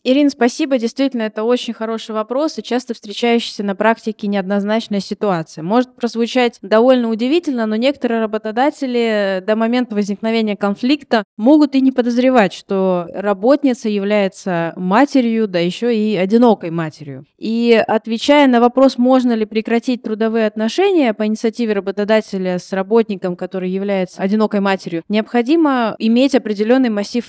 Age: 20-39